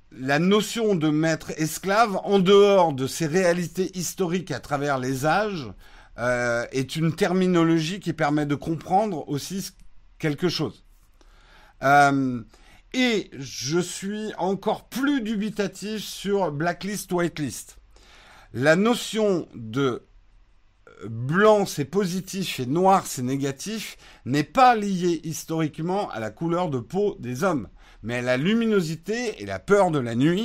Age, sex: 50-69, male